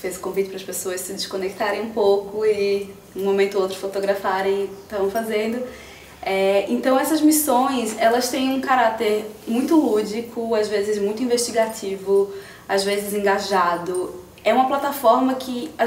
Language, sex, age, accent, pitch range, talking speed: Portuguese, female, 20-39, Brazilian, 195-245 Hz, 160 wpm